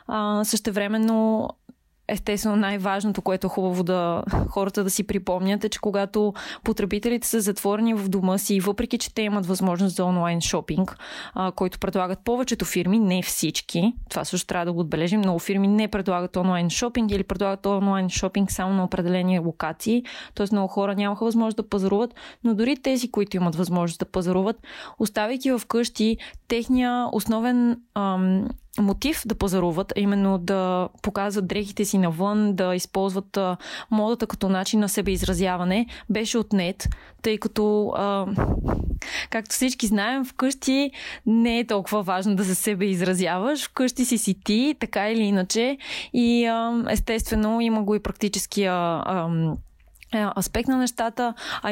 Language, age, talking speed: Bulgarian, 20-39, 145 wpm